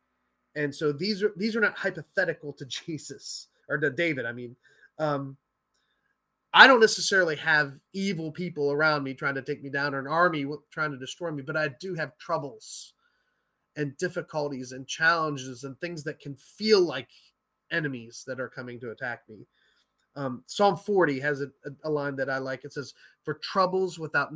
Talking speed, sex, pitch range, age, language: 180 wpm, male, 130-165 Hz, 30-49, English